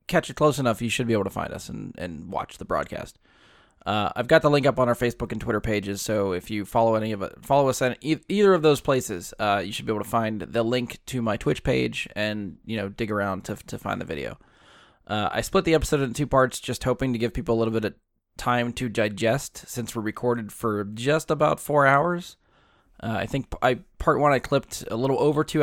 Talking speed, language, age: 245 wpm, English, 20-39